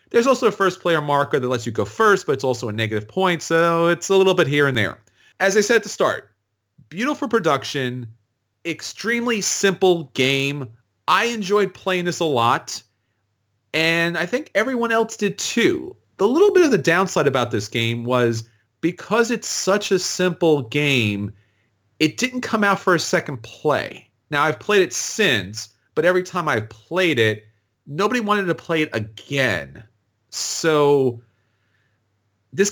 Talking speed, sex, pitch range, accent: 165 wpm, male, 115-175 Hz, American